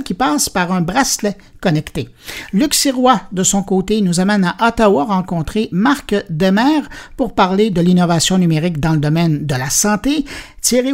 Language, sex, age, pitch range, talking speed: French, male, 60-79, 175-235 Hz, 165 wpm